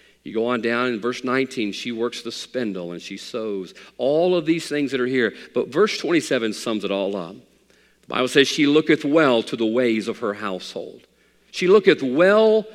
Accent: American